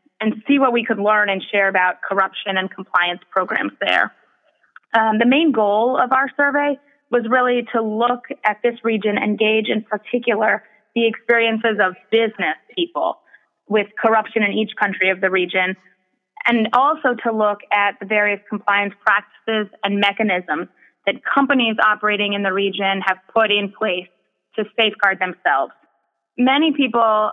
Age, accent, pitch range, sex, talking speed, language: 20-39, American, 195-230 Hz, female, 155 wpm, English